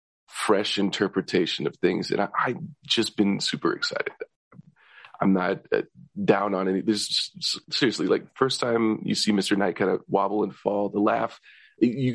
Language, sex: English, male